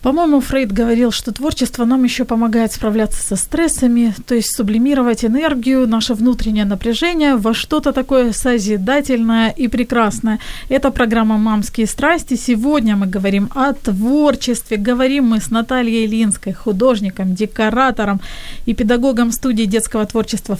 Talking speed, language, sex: 130 wpm, Ukrainian, female